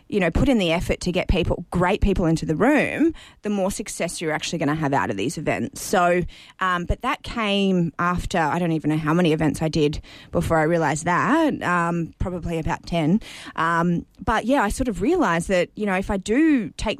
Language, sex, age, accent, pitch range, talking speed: English, female, 20-39, Australian, 165-205 Hz, 220 wpm